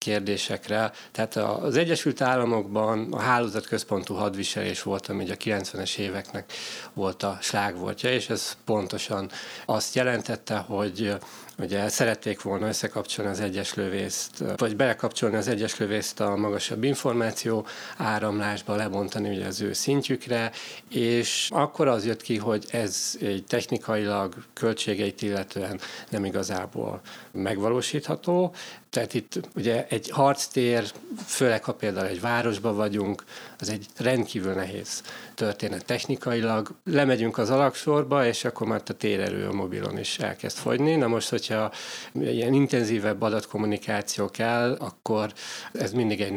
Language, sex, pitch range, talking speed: Hungarian, male, 100-120 Hz, 130 wpm